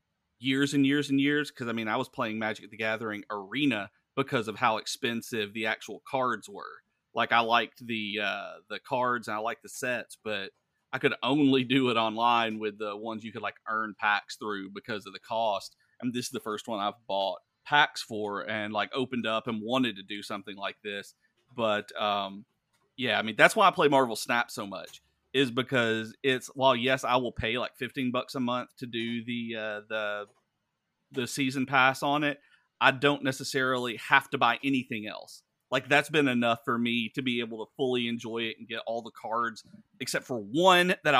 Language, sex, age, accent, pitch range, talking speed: English, male, 30-49, American, 110-140 Hz, 205 wpm